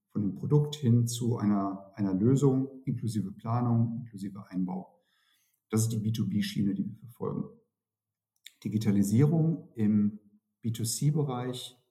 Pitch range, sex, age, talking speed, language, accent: 105-135 Hz, male, 50-69, 110 wpm, German, German